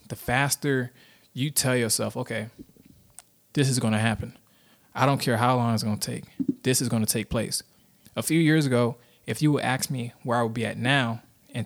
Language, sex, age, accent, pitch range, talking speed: English, male, 20-39, American, 115-130 Hz, 215 wpm